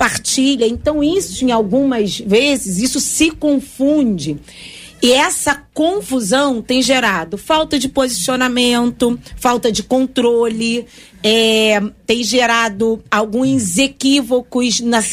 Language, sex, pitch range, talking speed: Portuguese, female, 225-275 Hz, 90 wpm